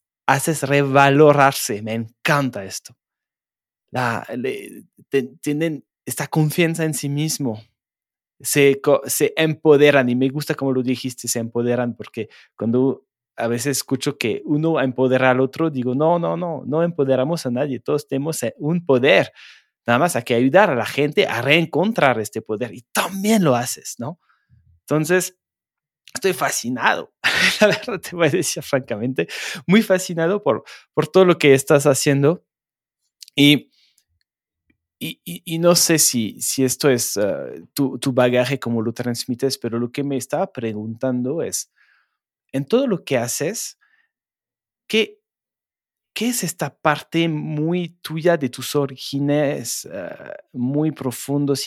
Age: 20-39